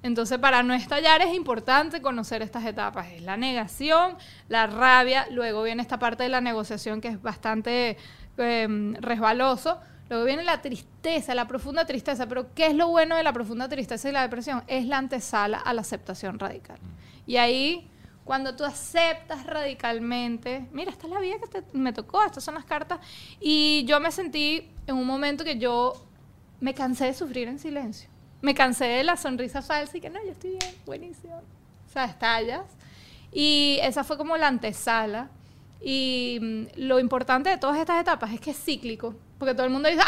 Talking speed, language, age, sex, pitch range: 185 wpm, Spanish, 20-39, female, 235-300 Hz